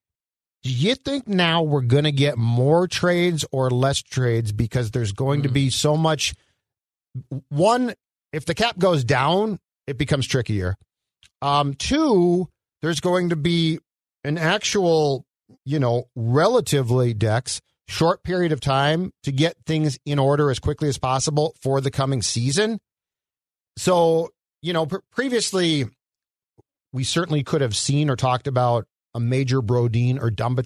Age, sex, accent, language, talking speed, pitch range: 40-59, male, American, English, 145 wpm, 125-160 Hz